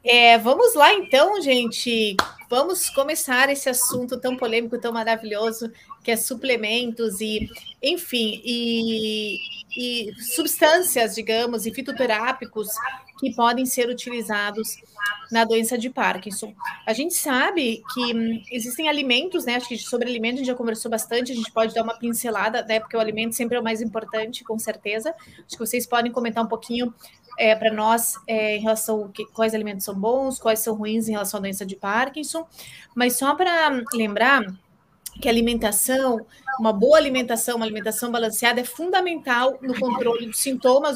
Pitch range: 225-275 Hz